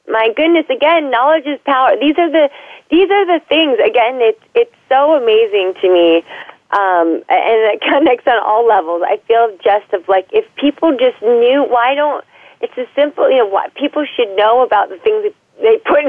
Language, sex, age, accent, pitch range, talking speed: English, female, 30-49, American, 190-315 Hz, 200 wpm